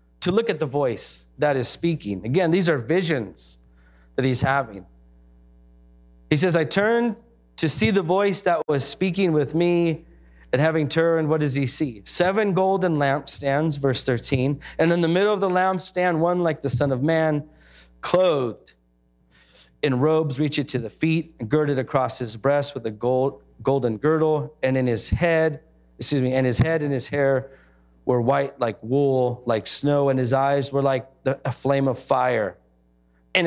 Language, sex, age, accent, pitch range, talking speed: English, male, 30-49, American, 105-155 Hz, 180 wpm